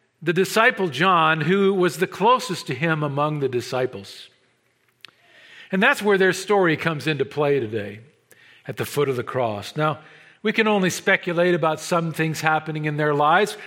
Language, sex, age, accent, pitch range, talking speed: English, male, 50-69, American, 140-190 Hz, 170 wpm